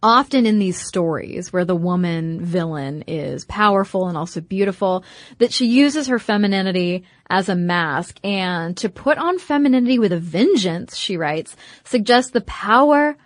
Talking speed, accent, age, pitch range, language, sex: 155 wpm, American, 30-49, 180-245 Hz, English, female